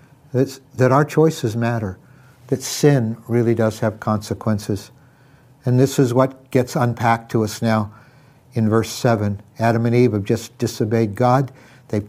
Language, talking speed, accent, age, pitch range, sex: English, 150 wpm, American, 60-79, 115-135 Hz, male